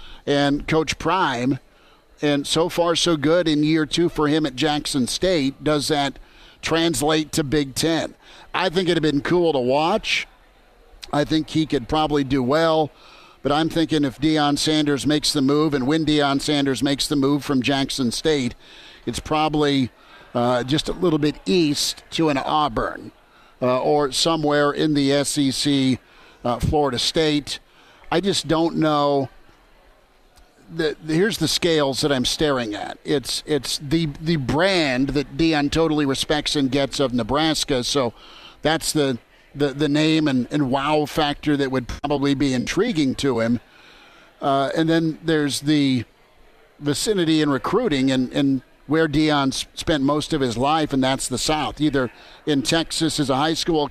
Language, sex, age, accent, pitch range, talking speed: English, male, 50-69, American, 140-155 Hz, 165 wpm